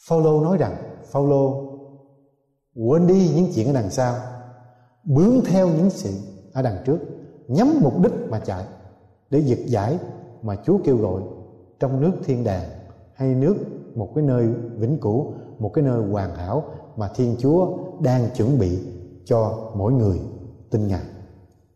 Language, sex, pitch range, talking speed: Vietnamese, male, 110-160 Hz, 160 wpm